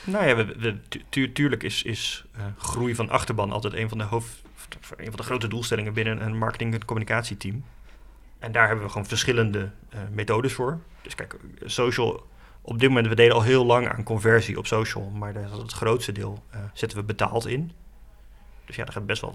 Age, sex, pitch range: 30-49, male, 105-115 Hz